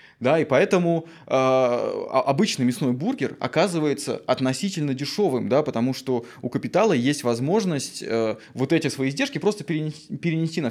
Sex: male